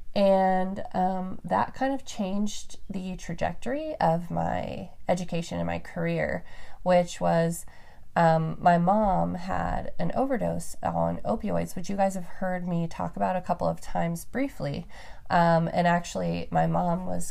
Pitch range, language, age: 155-195 Hz, English, 30-49